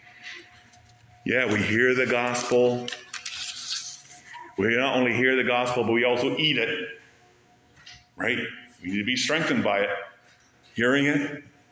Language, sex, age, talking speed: English, male, 50-69, 135 wpm